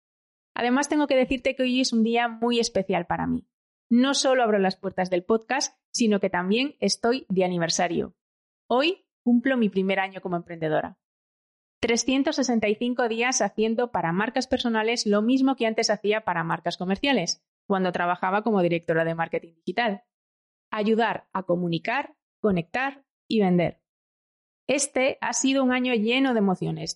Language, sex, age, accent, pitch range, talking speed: Spanish, female, 30-49, Spanish, 190-245 Hz, 150 wpm